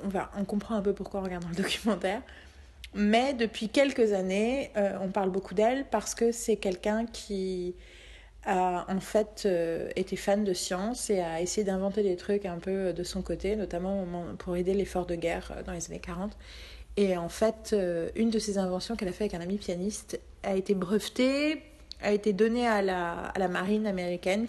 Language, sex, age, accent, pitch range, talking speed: French, female, 30-49, French, 185-225 Hz, 200 wpm